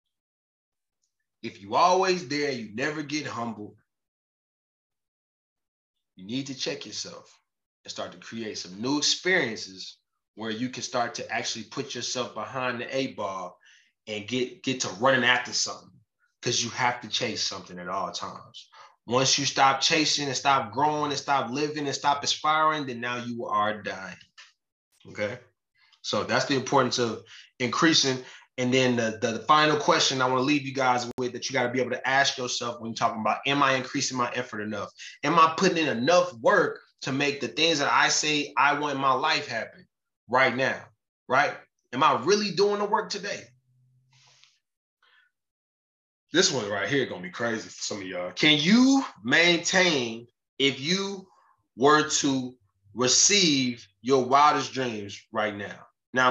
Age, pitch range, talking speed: 20-39, 120-150 Hz, 175 wpm